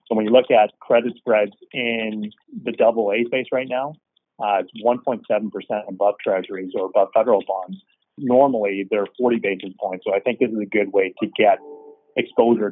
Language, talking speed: English, 180 wpm